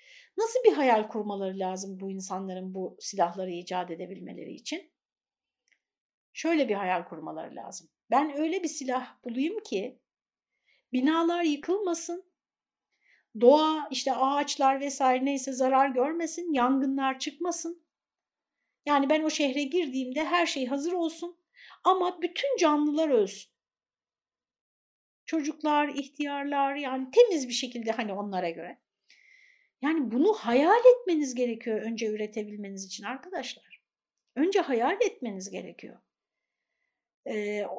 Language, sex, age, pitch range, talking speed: Turkish, female, 60-79, 245-350 Hz, 110 wpm